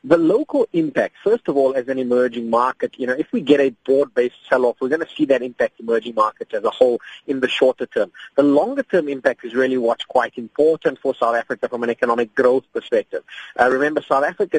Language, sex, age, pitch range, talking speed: English, male, 30-49, 130-180 Hz, 220 wpm